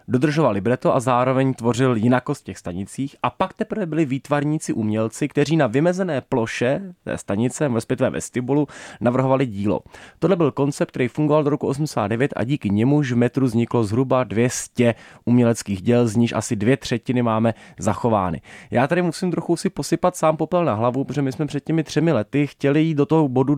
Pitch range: 110-140 Hz